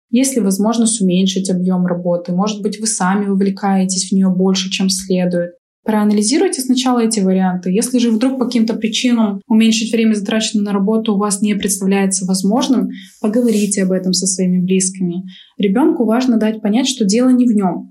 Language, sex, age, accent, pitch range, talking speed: Russian, female, 20-39, native, 195-230 Hz, 170 wpm